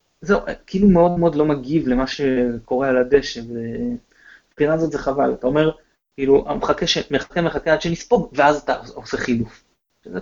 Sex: male